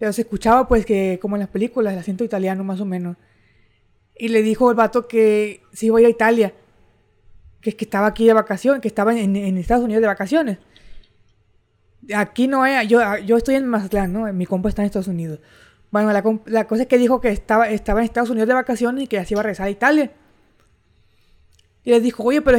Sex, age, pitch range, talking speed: female, 20-39, 200-240 Hz, 225 wpm